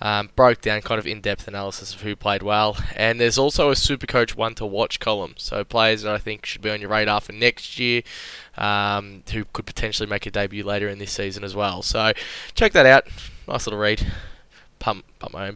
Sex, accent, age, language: male, Australian, 10-29, English